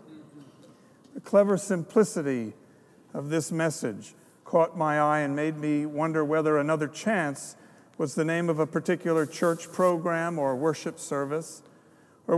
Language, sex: English, male